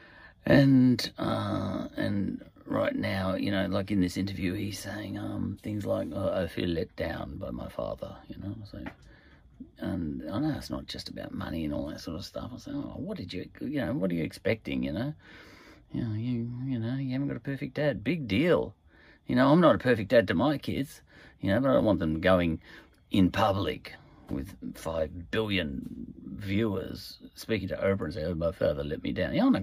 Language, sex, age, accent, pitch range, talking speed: English, male, 40-59, Australian, 95-145 Hz, 215 wpm